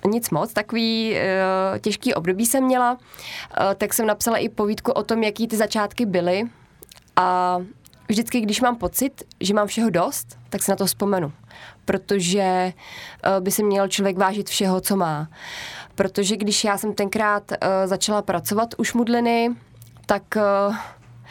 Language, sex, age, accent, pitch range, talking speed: Czech, female, 20-39, native, 190-215 Hz, 160 wpm